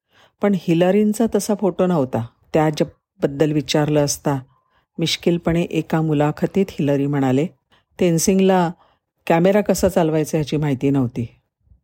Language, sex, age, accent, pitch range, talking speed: Marathi, female, 50-69, native, 140-175 Hz, 110 wpm